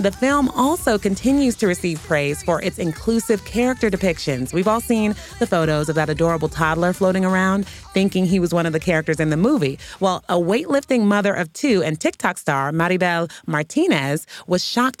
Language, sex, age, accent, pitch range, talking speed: English, female, 30-49, American, 165-225 Hz, 185 wpm